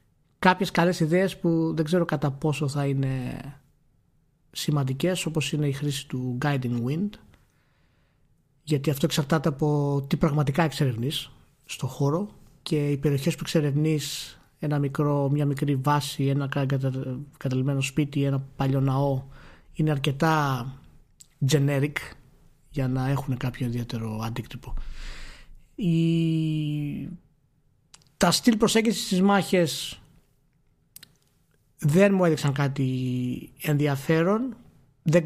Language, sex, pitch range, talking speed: Greek, male, 135-155 Hz, 110 wpm